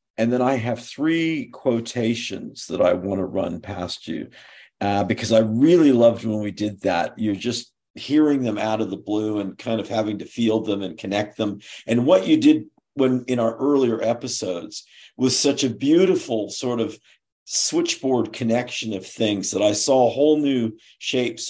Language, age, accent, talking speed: English, 50-69, American, 180 wpm